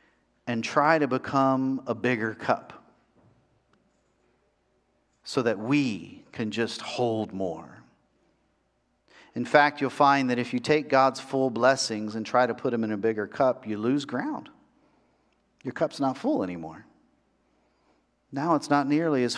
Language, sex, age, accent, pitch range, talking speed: English, male, 50-69, American, 105-140 Hz, 145 wpm